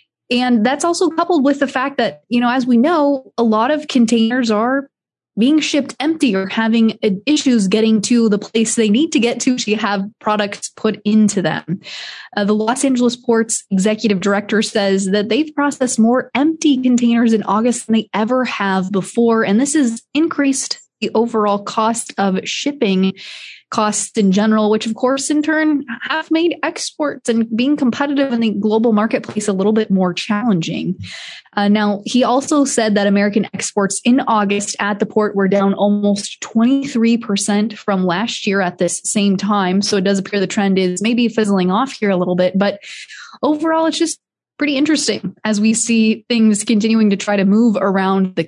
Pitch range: 205-255 Hz